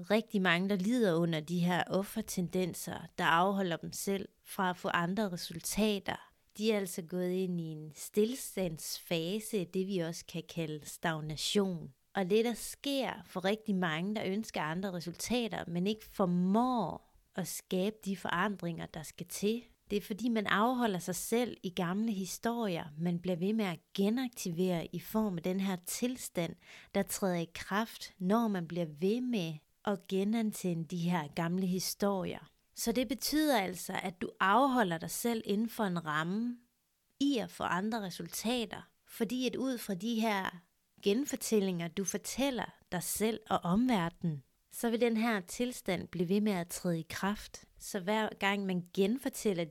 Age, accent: 30-49, native